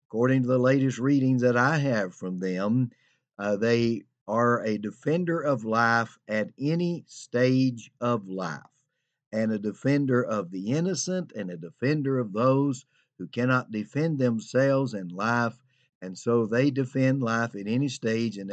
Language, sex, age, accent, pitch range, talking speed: English, male, 50-69, American, 105-130 Hz, 155 wpm